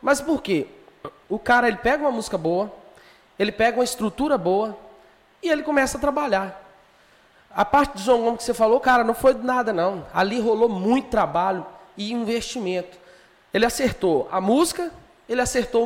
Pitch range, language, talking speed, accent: 205-265 Hz, Portuguese, 170 wpm, Brazilian